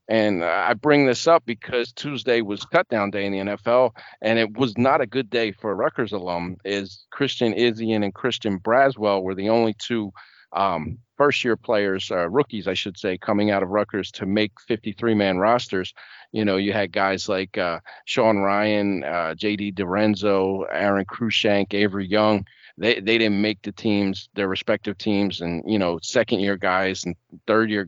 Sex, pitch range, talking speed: male, 95-115 Hz, 185 wpm